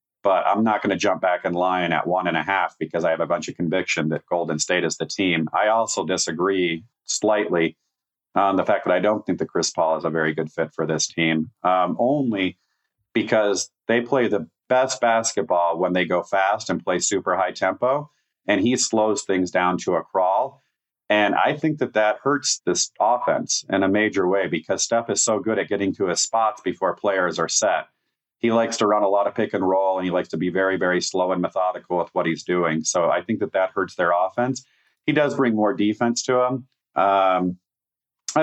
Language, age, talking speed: English, 40-59, 220 wpm